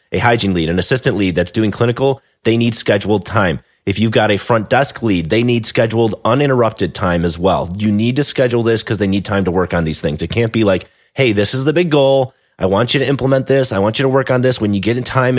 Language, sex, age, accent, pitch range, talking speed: English, male, 30-49, American, 105-140 Hz, 270 wpm